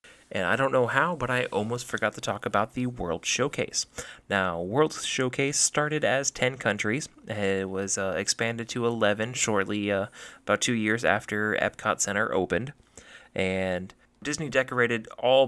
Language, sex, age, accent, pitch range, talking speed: English, male, 30-49, American, 100-120 Hz, 160 wpm